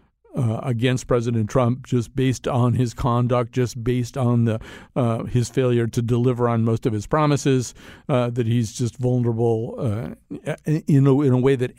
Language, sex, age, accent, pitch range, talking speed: English, male, 50-69, American, 120-140 Hz, 180 wpm